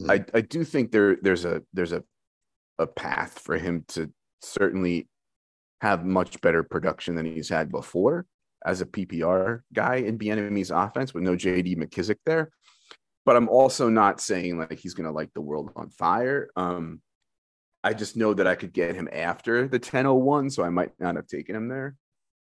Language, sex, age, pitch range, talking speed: English, male, 30-49, 95-140 Hz, 185 wpm